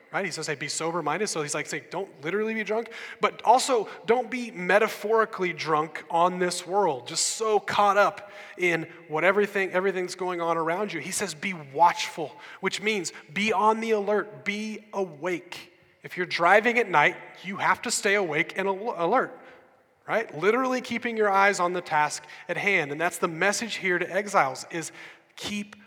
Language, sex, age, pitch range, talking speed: English, male, 30-49, 165-205 Hz, 180 wpm